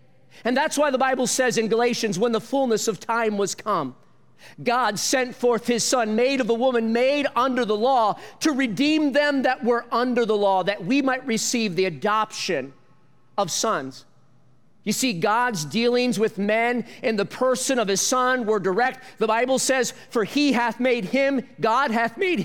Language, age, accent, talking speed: English, 40-59, American, 185 wpm